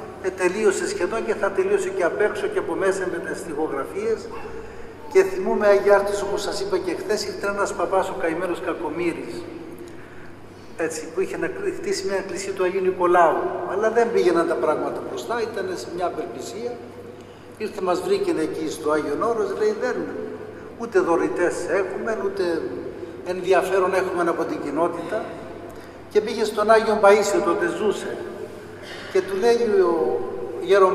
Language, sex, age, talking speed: Greek, male, 60-79, 155 wpm